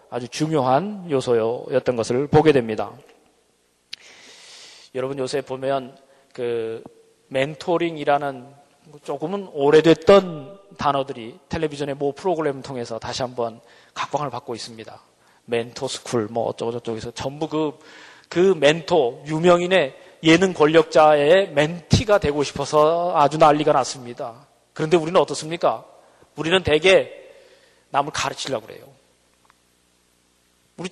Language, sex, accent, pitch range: Korean, male, native, 120-190 Hz